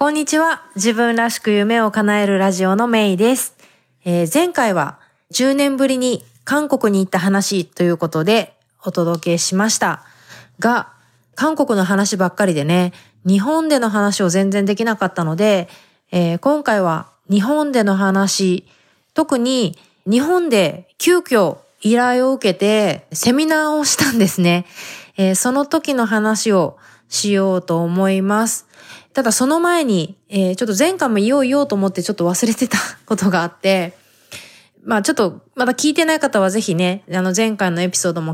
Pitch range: 185-250 Hz